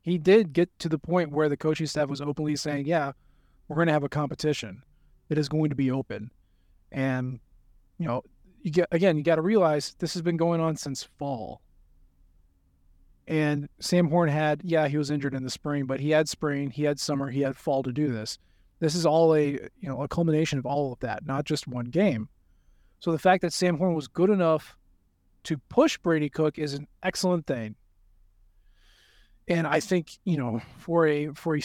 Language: English